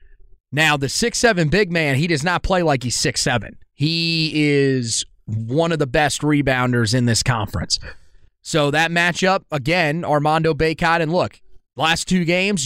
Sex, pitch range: male, 130-165 Hz